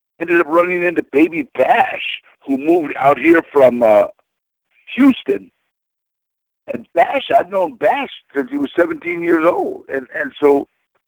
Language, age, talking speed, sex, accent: English, 60-79, 145 wpm, male, American